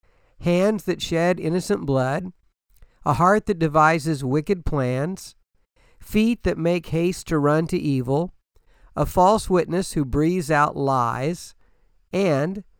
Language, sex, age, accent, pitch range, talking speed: English, male, 50-69, American, 130-175 Hz, 125 wpm